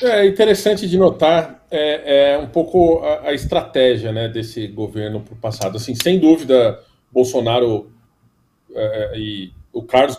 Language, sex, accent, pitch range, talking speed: Portuguese, male, Brazilian, 115-150 Hz, 125 wpm